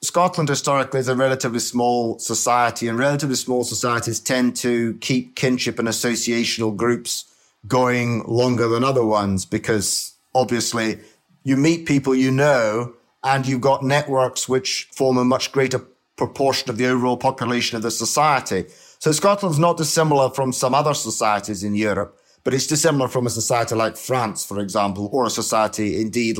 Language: English